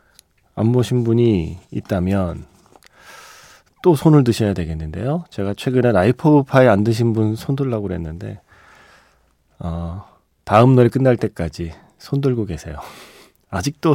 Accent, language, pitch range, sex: native, Korean, 90-130 Hz, male